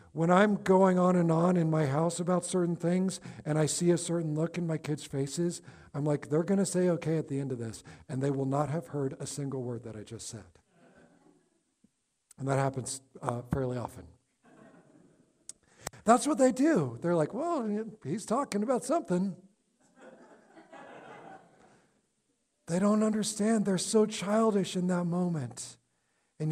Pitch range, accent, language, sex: 145-205 Hz, American, English, male